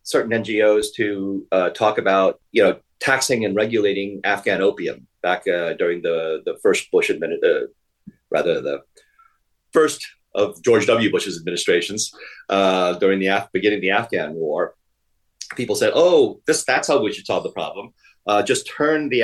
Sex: male